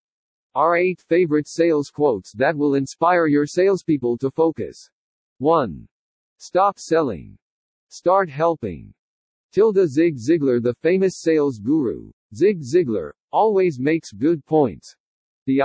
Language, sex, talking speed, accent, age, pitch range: English, male, 120 wpm, American, 50-69, 135-175 Hz